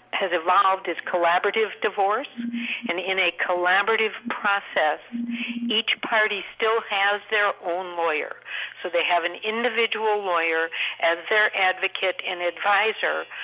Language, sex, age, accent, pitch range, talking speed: English, female, 60-79, American, 180-225 Hz, 125 wpm